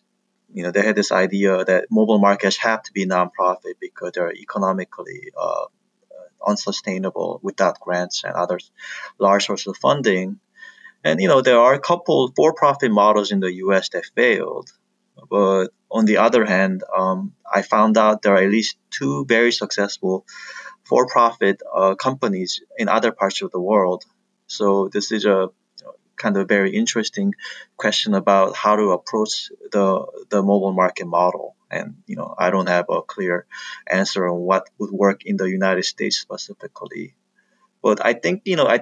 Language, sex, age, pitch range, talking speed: English, male, 20-39, 95-155 Hz, 165 wpm